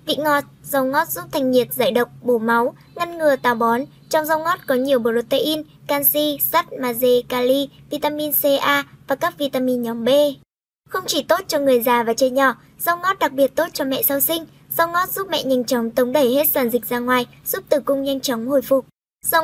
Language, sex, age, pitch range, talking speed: Vietnamese, male, 10-29, 255-305 Hz, 220 wpm